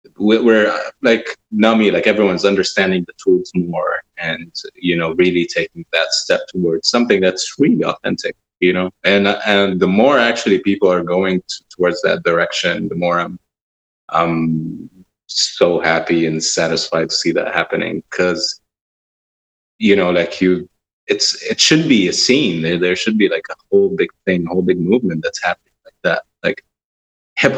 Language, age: English, 20-39